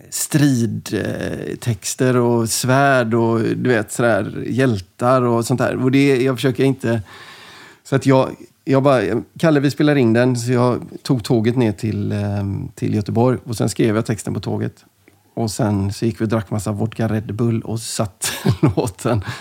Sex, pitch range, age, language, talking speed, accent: male, 110-125 Hz, 30-49, English, 175 wpm, Swedish